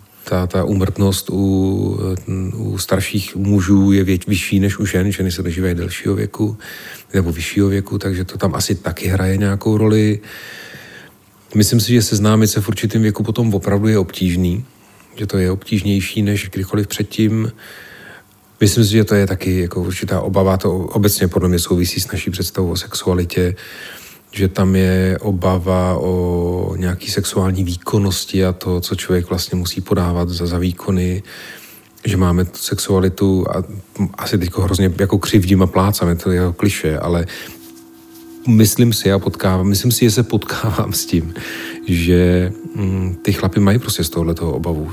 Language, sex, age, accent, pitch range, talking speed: Czech, male, 40-59, native, 90-105 Hz, 160 wpm